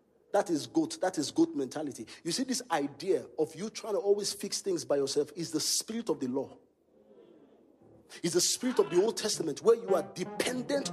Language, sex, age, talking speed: English, male, 50-69, 205 wpm